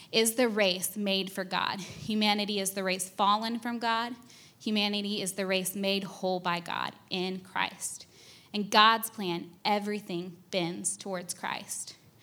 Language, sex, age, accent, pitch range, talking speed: English, female, 20-39, American, 190-225 Hz, 145 wpm